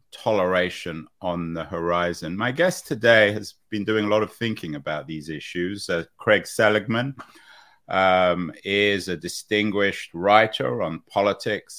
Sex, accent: male, British